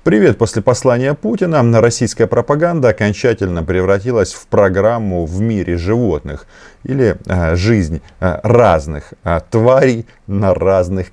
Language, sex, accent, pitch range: Russian, male, native, 85-120 Hz